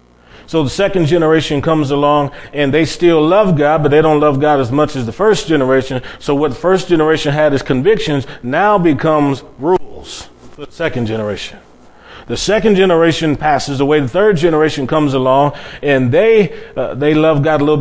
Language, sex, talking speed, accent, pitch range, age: English, male, 185 wpm, American, 130-165 Hz, 30-49